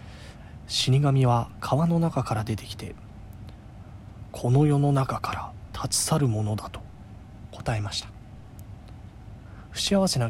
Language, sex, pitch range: Japanese, male, 105-130 Hz